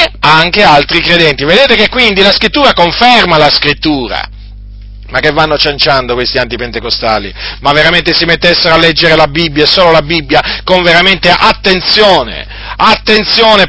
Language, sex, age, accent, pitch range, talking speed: Italian, male, 40-59, native, 170-235 Hz, 140 wpm